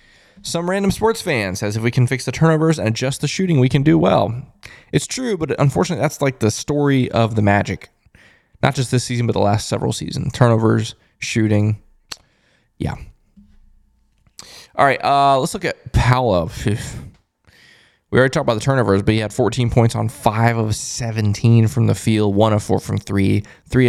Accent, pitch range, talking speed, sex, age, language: American, 110-150 Hz, 185 wpm, male, 20-39, English